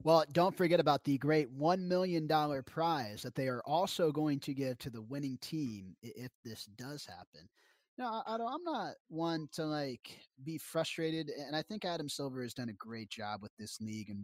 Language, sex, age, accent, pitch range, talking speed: English, male, 30-49, American, 115-165 Hz, 205 wpm